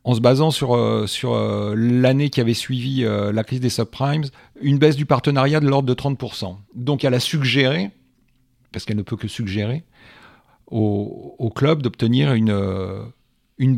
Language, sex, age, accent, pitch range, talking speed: French, male, 40-59, French, 105-130 Hz, 160 wpm